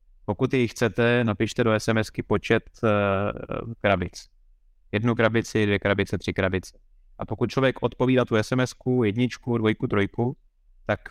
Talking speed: 130 wpm